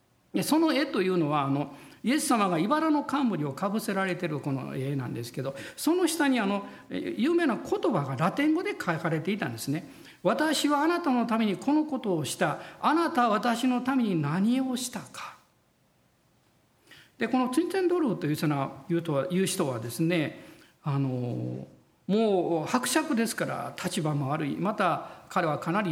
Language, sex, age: Japanese, male, 50-69